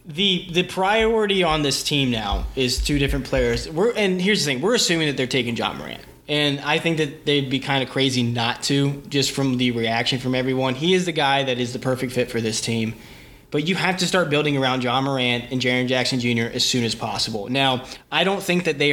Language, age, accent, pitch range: English, 20-39, American, 125-155 Hz